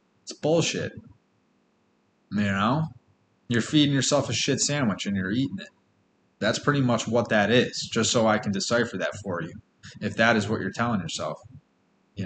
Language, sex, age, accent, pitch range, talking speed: English, male, 20-39, American, 100-120 Hz, 175 wpm